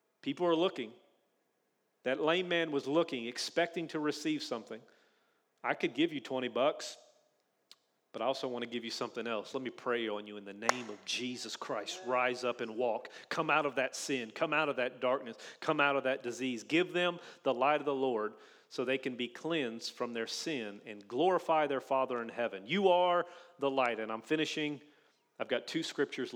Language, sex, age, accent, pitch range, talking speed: English, male, 40-59, American, 130-175 Hz, 205 wpm